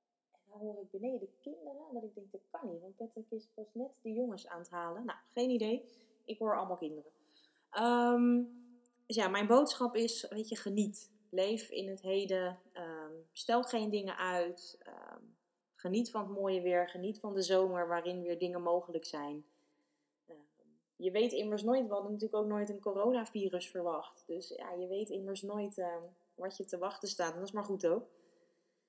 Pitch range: 175-225 Hz